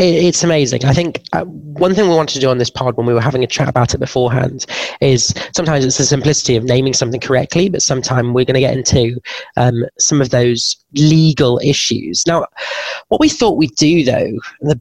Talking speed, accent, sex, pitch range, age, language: 210 wpm, British, male, 125-150 Hz, 20-39, English